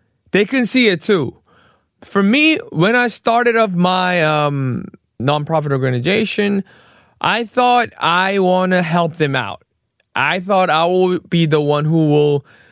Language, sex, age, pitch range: Korean, male, 20-39, 150-195 Hz